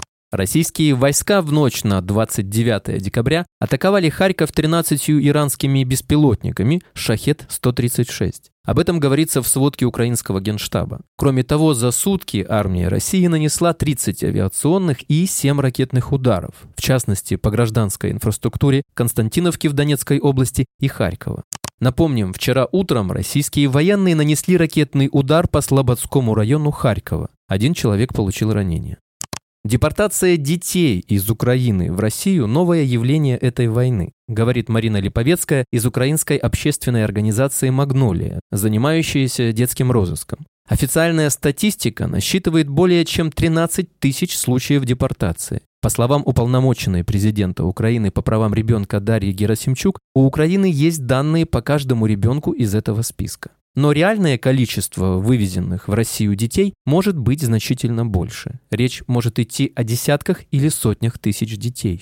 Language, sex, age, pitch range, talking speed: Russian, male, 20-39, 110-150 Hz, 125 wpm